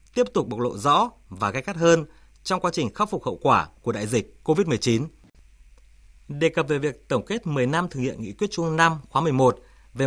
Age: 20-39